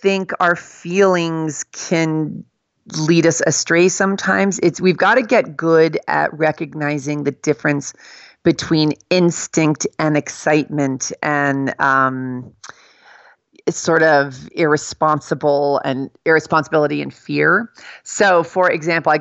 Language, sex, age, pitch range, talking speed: English, female, 40-59, 140-165 Hz, 110 wpm